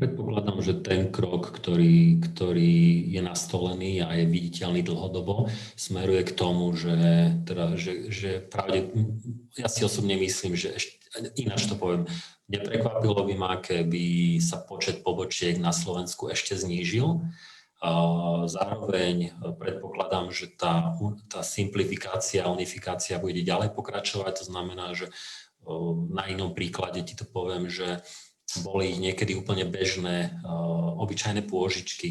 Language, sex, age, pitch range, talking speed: Slovak, male, 40-59, 90-105 Hz, 125 wpm